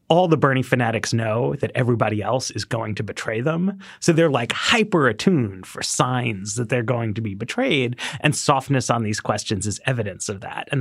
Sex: male